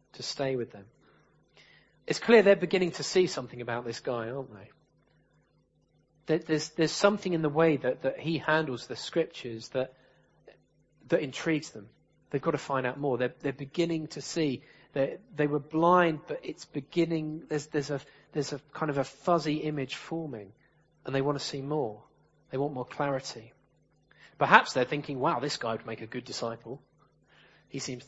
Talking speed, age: 180 wpm, 30-49